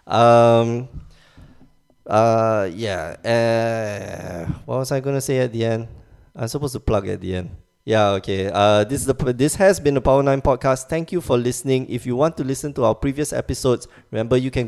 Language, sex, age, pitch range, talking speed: English, male, 20-39, 100-130 Hz, 195 wpm